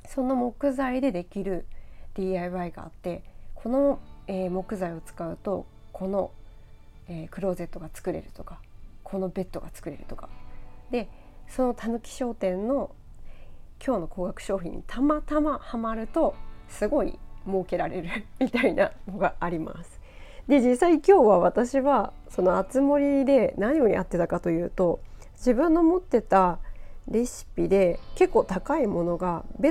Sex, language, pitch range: female, Japanese, 180-270 Hz